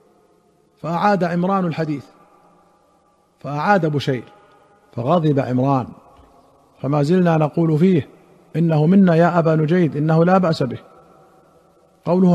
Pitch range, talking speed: 140-170 Hz, 100 wpm